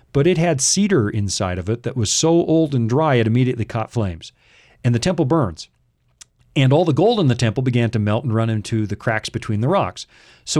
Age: 40-59